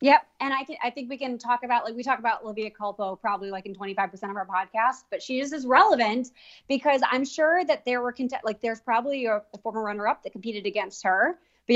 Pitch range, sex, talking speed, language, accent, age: 215-265 Hz, female, 240 wpm, English, American, 20-39